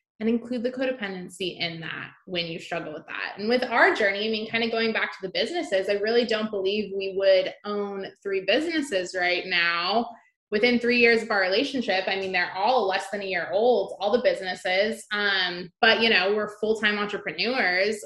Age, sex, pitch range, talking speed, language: 20-39, female, 190-245 Hz, 200 wpm, English